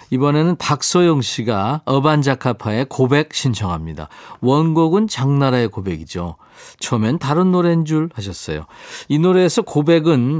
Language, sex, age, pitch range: Korean, male, 40-59, 105-155 Hz